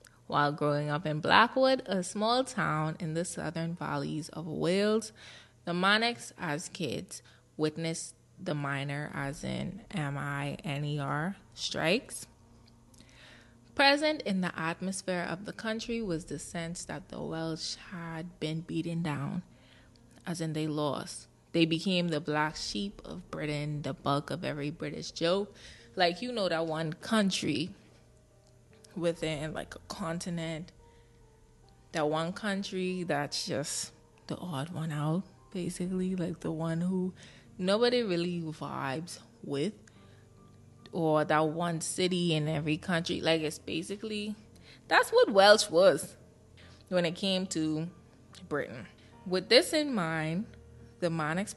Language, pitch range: English, 150-185 Hz